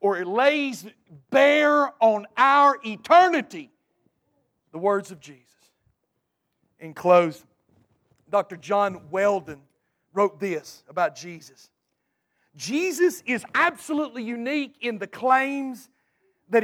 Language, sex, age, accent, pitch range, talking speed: English, male, 40-59, American, 225-295 Hz, 95 wpm